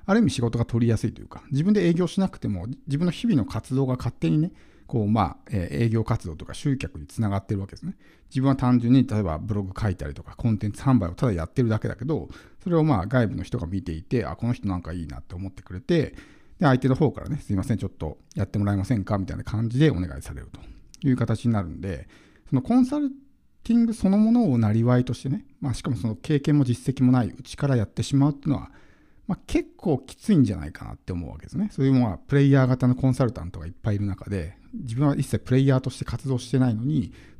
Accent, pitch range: native, 100-140 Hz